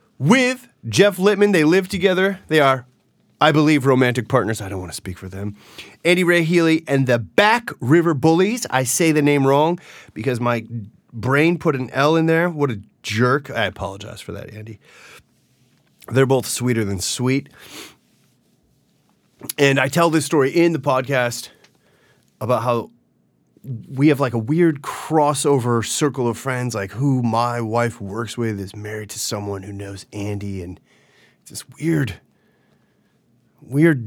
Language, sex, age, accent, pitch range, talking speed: English, male, 30-49, American, 110-155 Hz, 160 wpm